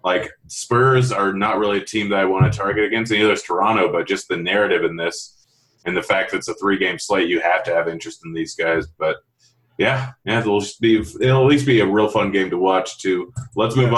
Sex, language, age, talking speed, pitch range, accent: male, English, 30-49, 255 wpm, 95-120 Hz, American